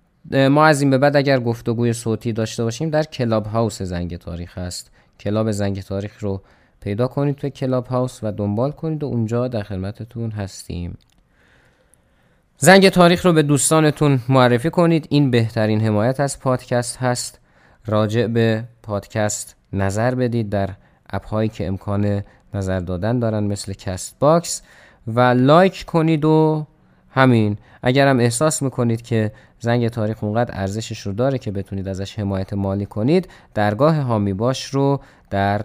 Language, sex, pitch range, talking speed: Persian, male, 100-130 Hz, 150 wpm